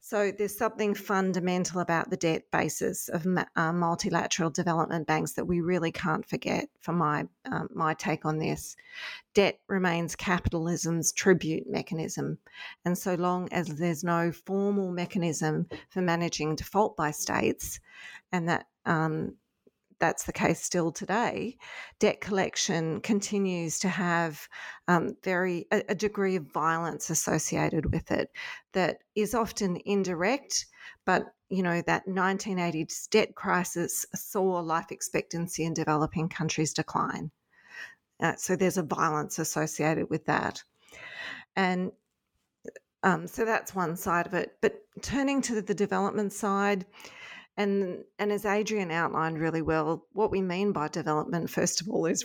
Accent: Australian